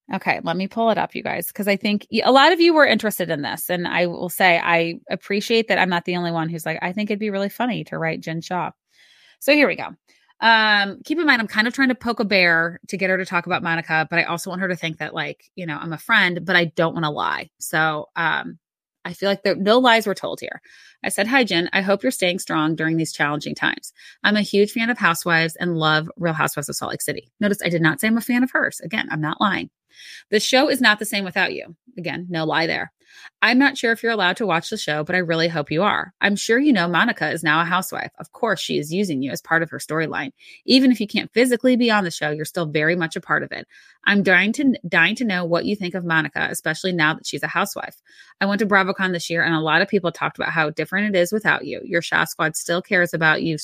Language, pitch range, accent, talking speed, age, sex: English, 165-215 Hz, American, 275 wpm, 20-39, female